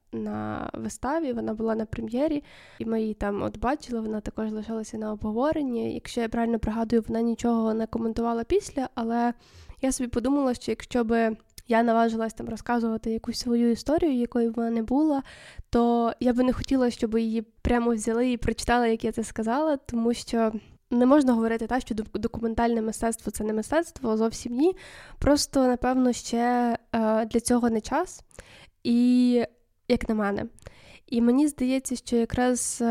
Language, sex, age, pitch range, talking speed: Ukrainian, female, 10-29, 225-250 Hz, 165 wpm